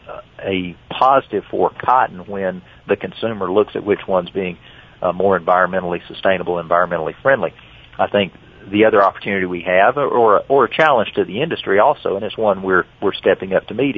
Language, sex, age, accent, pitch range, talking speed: English, male, 40-59, American, 90-105 Hz, 180 wpm